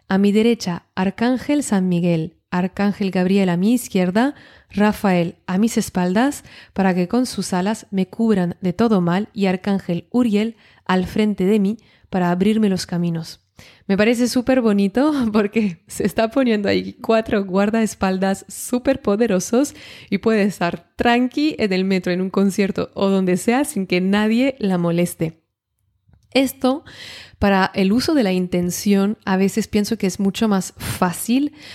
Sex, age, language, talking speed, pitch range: female, 20-39, Spanish, 155 wpm, 185-225 Hz